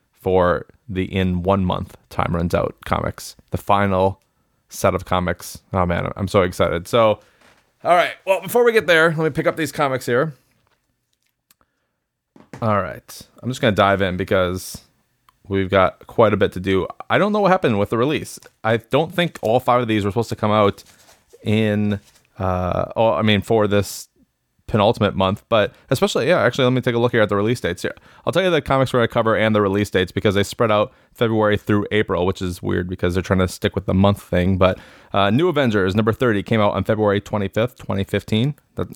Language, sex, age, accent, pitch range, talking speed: English, male, 20-39, American, 95-115 Hz, 210 wpm